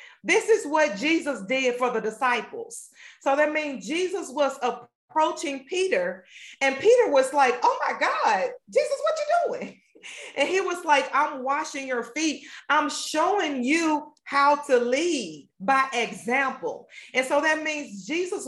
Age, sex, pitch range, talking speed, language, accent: 40-59, female, 255-315 Hz, 155 wpm, English, American